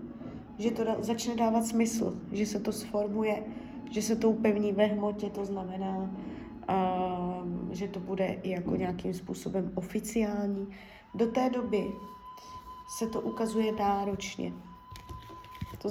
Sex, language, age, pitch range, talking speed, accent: female, Czech, 20-39, 195-225 Hz, 125 wpm, native